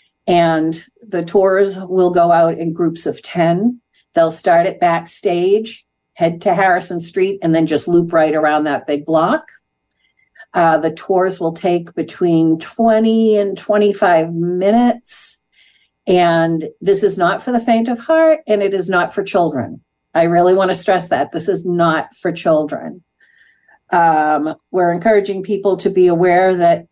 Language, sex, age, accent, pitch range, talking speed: English, female, 50-69, American, 165-215 Hz, 160 wpm